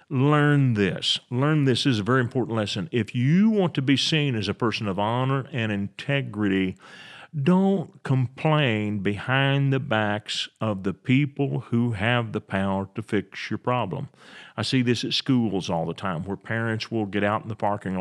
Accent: American